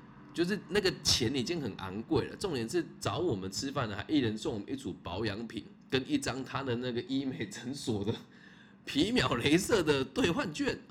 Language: Chinese